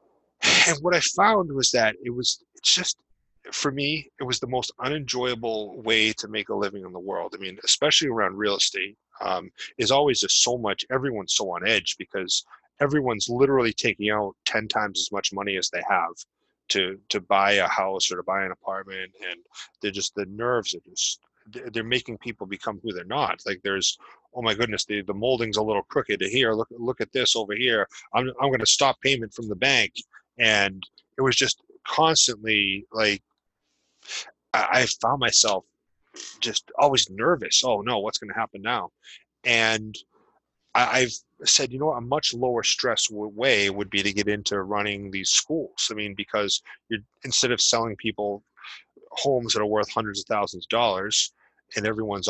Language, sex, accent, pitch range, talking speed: English, male, American, 105-130 Hz, 185 wpm